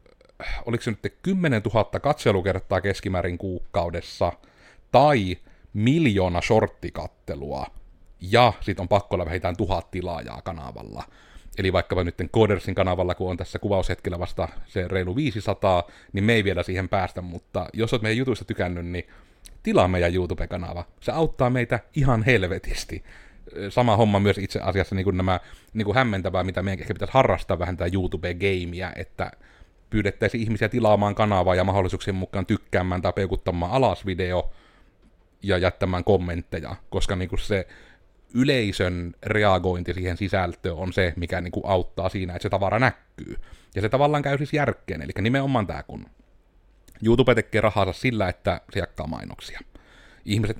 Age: 30-49